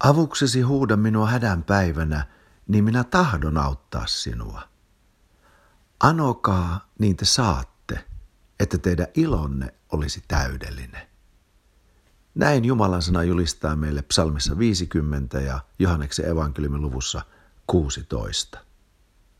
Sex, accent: male, native